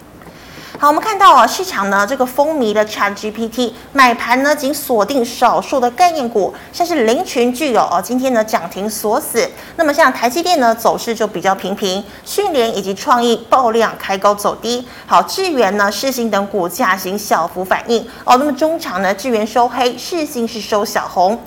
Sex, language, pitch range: female, Chinese, 215-285 Hz